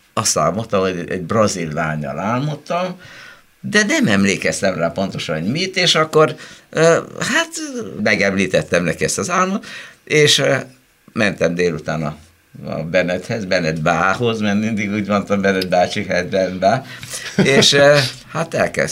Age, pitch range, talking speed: 60-79, 95-150 Hz, 115 wpm